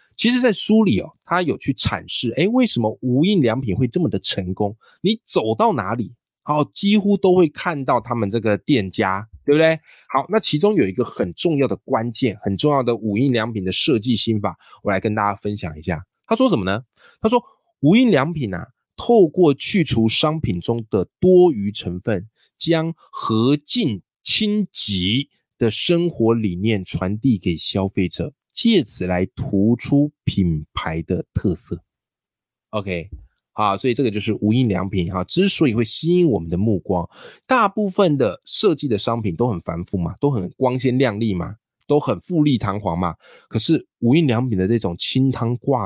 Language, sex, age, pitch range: Chinese, male, 20-39, 100-150 Hz